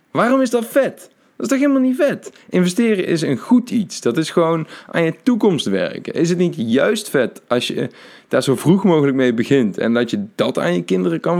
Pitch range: 110-140 Hz